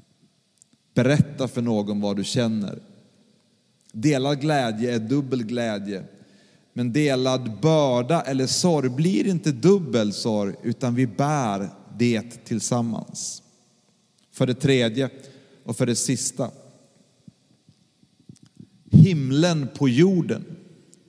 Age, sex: 30-49, male